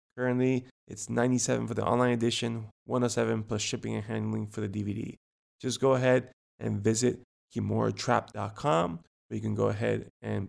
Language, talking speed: English, 155 wpm